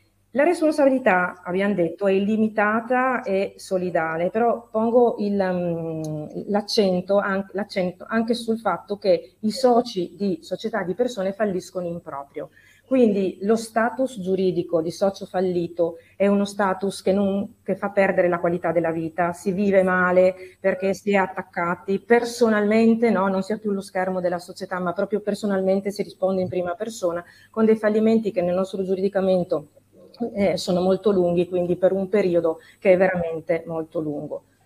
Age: 30-49